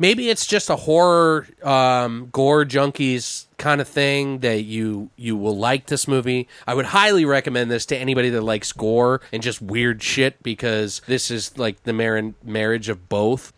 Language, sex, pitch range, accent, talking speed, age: English, male, 115-150 Hz, American, 175 wpm, 30-49